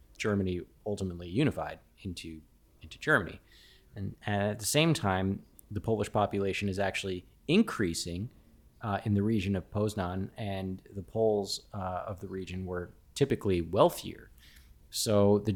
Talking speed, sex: 135 wpm, male